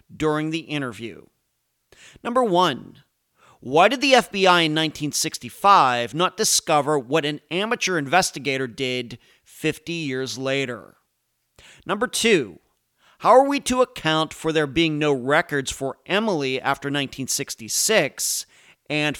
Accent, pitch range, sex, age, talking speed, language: American, 135-195 Hz, male, 40-59, 120 wpm, English